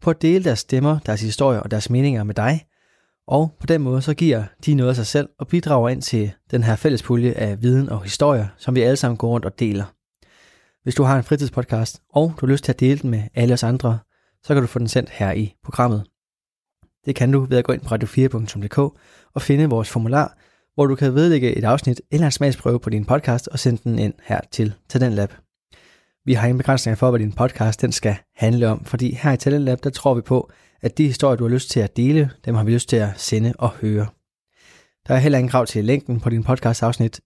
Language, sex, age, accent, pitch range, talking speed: Danish, male, 20-39, native, 115-135 Hz, 245 wpm